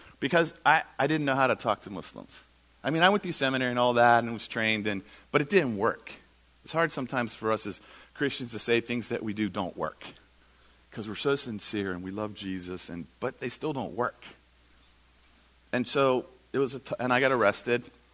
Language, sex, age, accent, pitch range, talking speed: English, male, 50-69, American, 85-120 Hz, 220 wpm